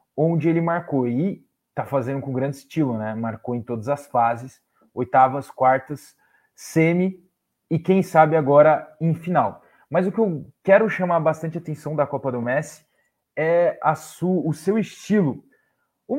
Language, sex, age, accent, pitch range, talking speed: Portuguese, male, 20-39, Brazilian, 135-175 Hz, 150 wpm